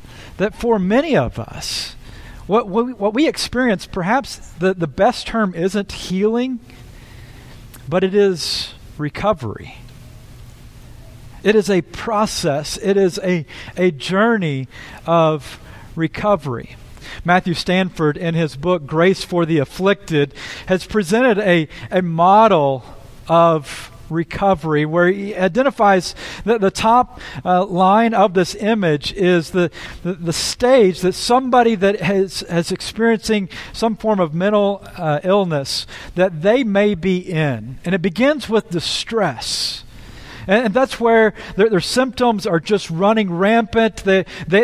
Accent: American